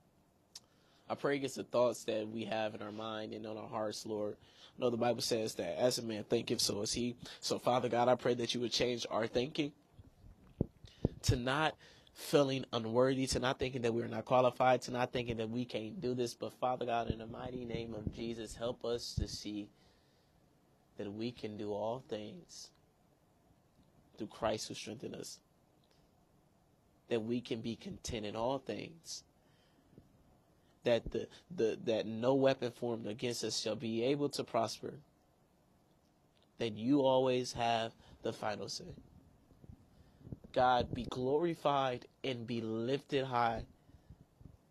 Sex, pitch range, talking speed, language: male, 110-125 Hz, 160 wpm, English